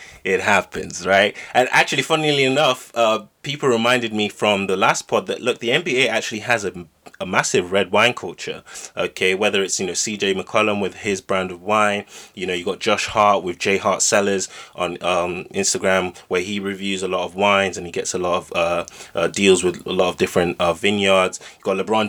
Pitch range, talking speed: 95-125 Hz, 210 wpm